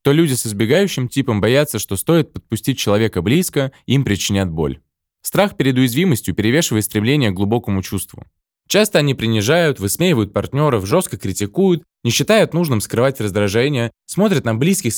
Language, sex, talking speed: Russian, male, 150 wpm